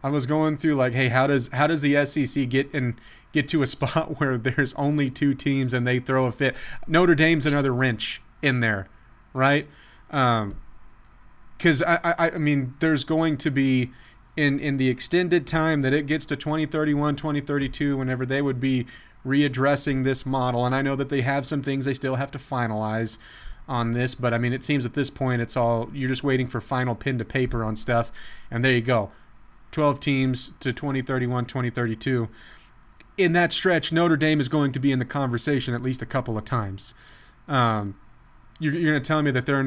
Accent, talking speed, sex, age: American, 205 wpm, male, 30-49